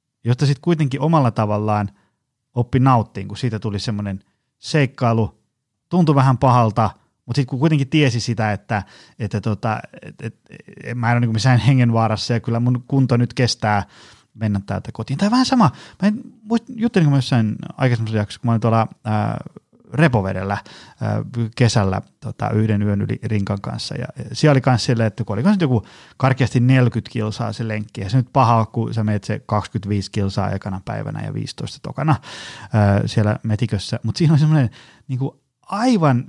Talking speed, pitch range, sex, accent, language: 165 wpm, 110-145 Hz, male, native, Finnish